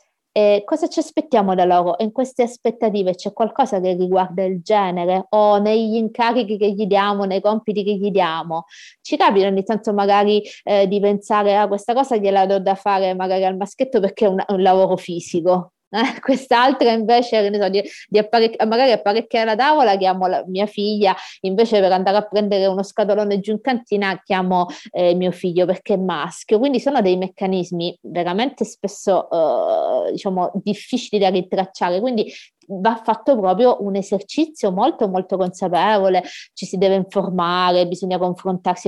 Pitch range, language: 185-215 Hz, Italian